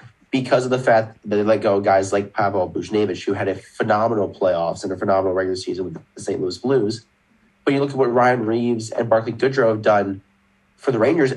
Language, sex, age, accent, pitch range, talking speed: English, male, 30-49, American, 100-125 Hz, 225 wpm